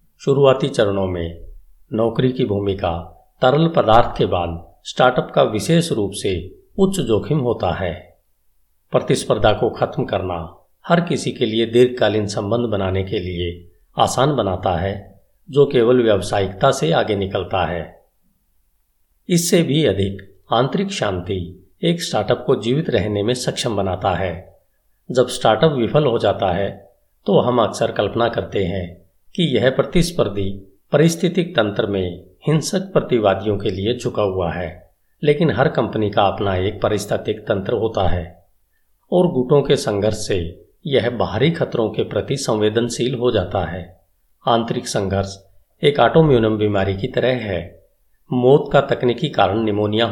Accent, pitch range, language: native, 95-130 Hz, Hindi